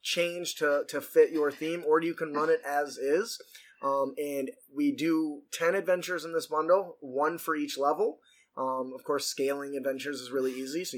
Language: English